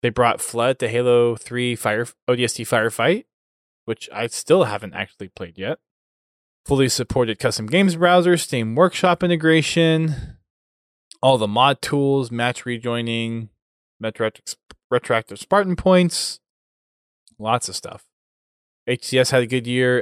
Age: 20-39